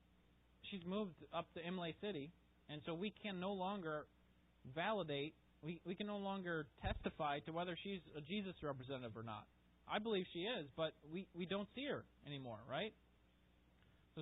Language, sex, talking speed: English, male, 170 wpm